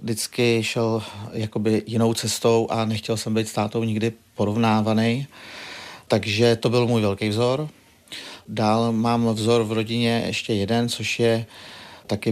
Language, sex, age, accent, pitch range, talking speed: Czech, male, 40-59, native, 110-120 Hz, 135 wpm